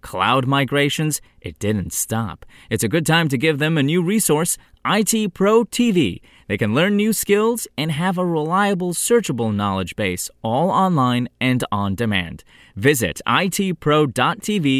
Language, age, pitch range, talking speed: English, 30-49, 110-175 Hz, 150 wpm